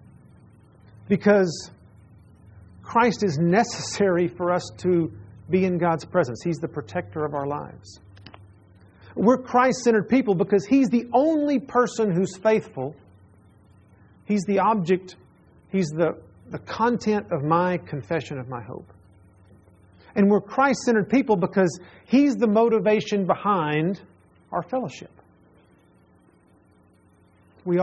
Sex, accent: male, American